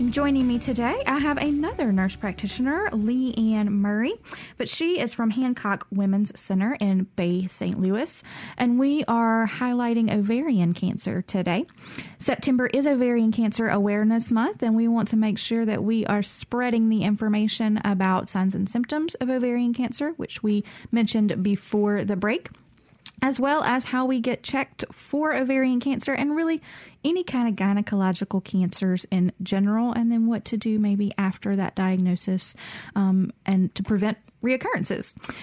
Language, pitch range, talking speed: English, 195-245 Hz, 155 wpm